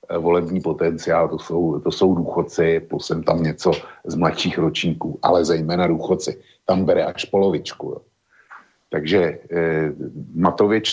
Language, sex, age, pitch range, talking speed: Slovak, male, 50-69, 85-95 Hz, 130 wpm